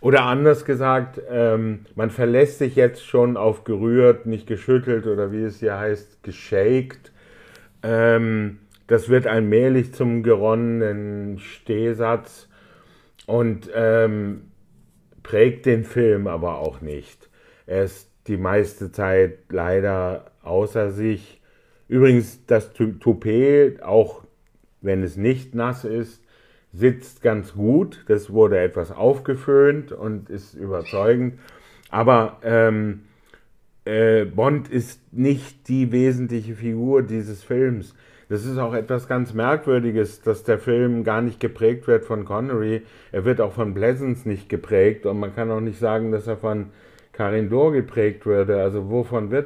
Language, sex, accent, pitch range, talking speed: German, male, German, 105-125 Hz, 130 wpm